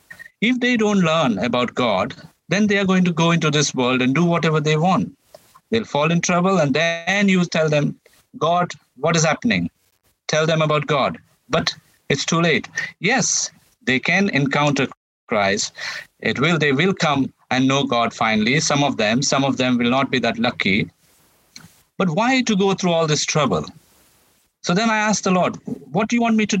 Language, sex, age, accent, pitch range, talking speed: English, male, 50-69, Indian, 145-205 Hz, 195 wpm